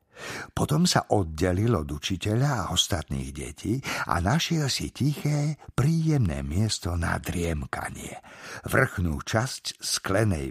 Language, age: Slovak, 60-79